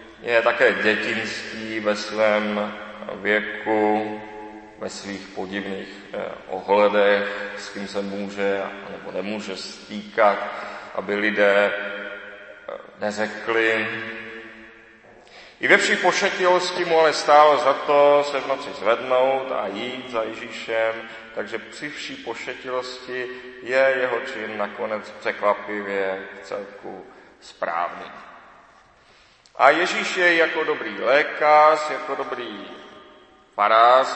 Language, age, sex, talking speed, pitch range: Czech, 30-49, male, 100 wpm, 105-135 Hz